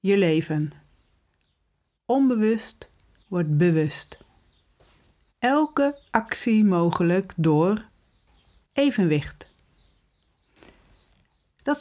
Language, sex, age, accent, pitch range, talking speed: Dutch, female, 40-59, Dutch, 175-230 Hz, 55 wpm